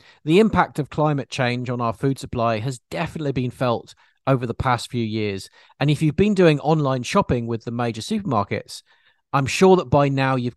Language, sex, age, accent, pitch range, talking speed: English, male, 40-59, British, 115-155 Hz, 200 wpm